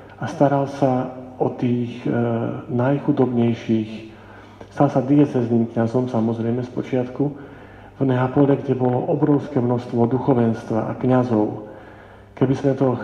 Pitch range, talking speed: 110-135 Hz, 115 wpm